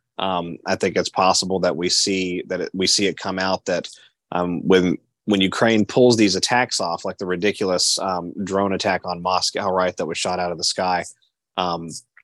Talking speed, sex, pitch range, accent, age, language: 195 wpm, male, 90-100 Hz, American, 30-49, English